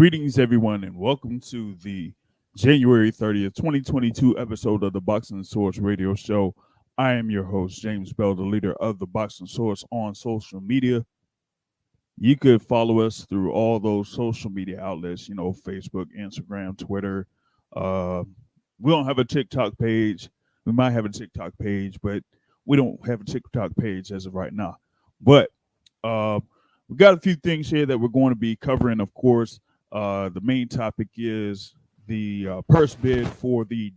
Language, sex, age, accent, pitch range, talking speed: English, male, 20-39, American, 100-120 Hz, 170 wpm